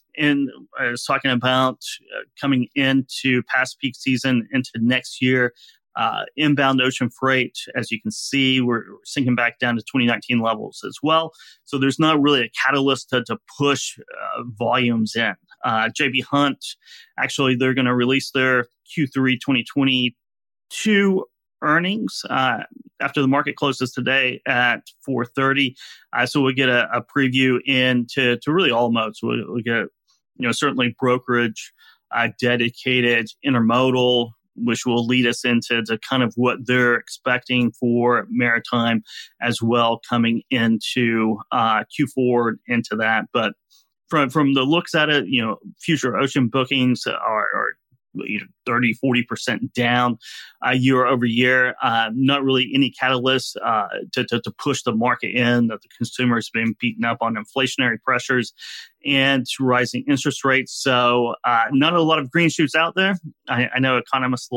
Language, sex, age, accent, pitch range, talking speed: English, male, 30-49, American, 120-140 Hz, 155 wpm